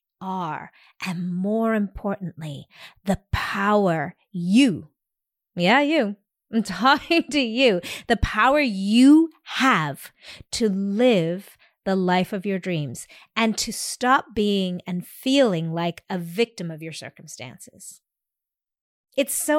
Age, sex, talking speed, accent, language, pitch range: 30-49, female, 115 wpm, American, English, 185-280 Hz